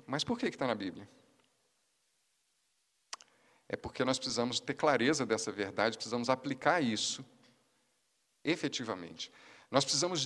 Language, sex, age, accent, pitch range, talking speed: Portuguese, male, 50-69, Brazilian, 120-205 Hz, 125 wpm